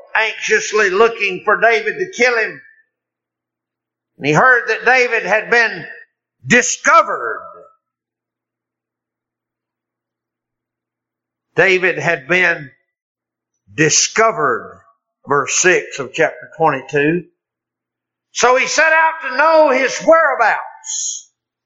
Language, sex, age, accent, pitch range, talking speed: English, male, 60-79, American, 215-335 Hz, 90 wpm